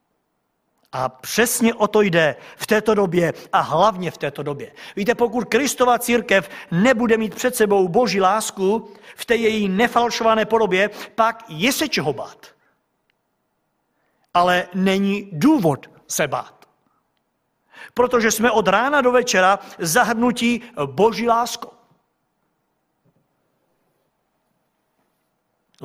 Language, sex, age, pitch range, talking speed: Czech, male, 50-69, 175-235 Hz, 110 wpm